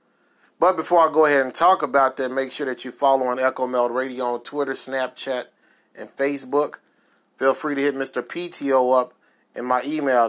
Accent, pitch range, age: American, 120-150 Hz, 30-49